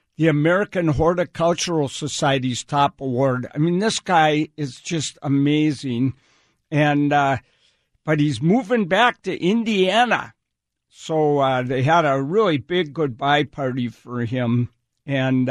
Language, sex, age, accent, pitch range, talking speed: English, male, 60-79, American, 135-180 Hz, 130 wpm